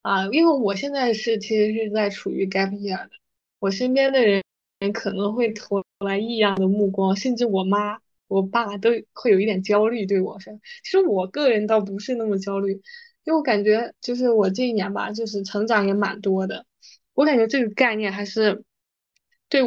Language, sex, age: Chinese, female, 20-39